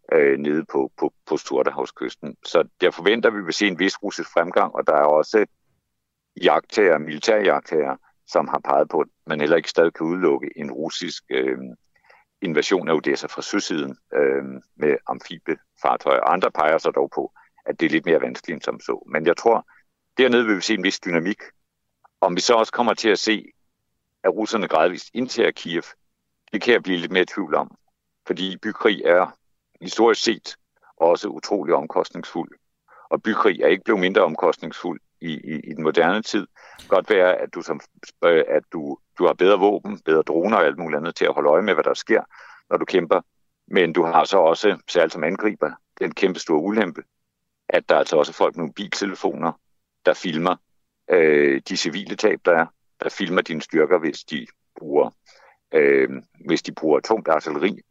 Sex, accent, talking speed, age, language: male, native, 180 wpm, 60-79, Danish